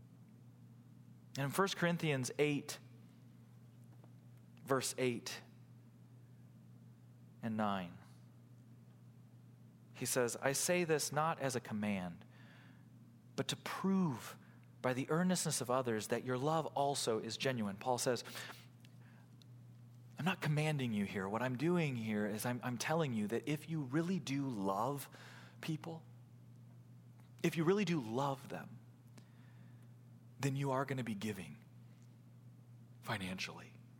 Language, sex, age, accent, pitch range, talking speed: English, male, 30-49, American, 115-140 Hz, 120 wpm